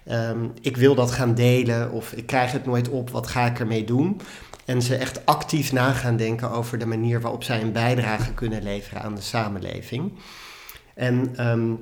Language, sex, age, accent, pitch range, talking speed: Dutch, male, 40-59, Dutch, 115-135 Hz, 185 wpm